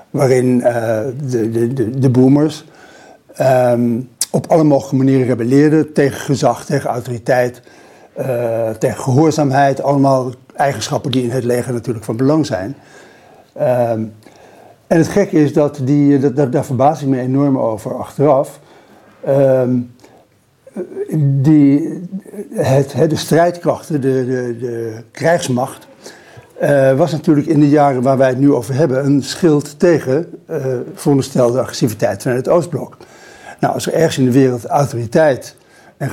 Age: 60-79